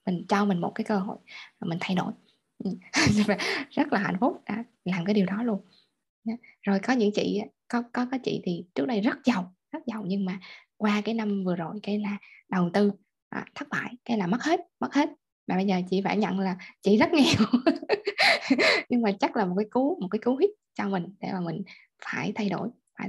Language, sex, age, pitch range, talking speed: Vietnamese, female, 20-39, 195-235 Hz, 220 wpm